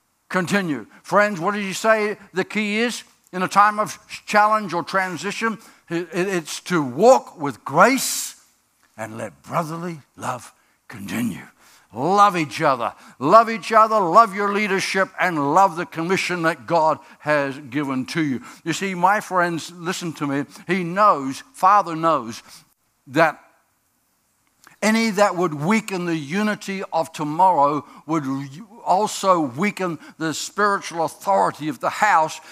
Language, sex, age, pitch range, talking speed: English, male, 60-79, 160-200 Hz, 135 wpm